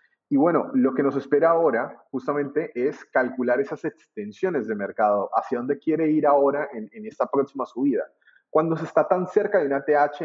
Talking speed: 185 wpm